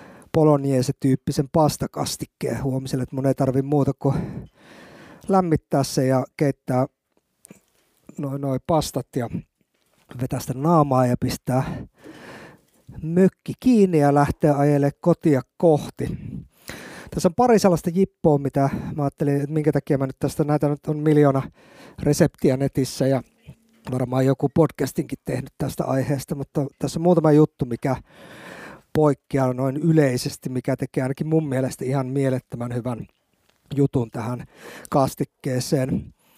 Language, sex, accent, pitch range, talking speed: Finnish, male, native, 135-165 Hz, 125 wpm